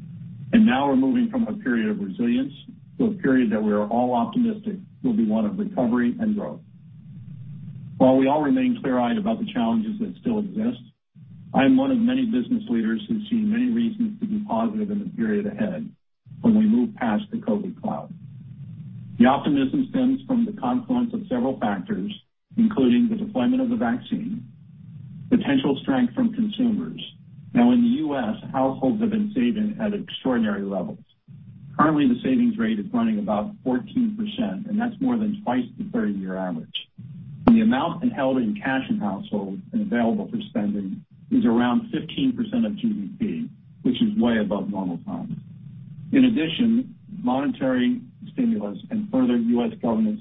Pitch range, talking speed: 200-240 Hz, 165 wpm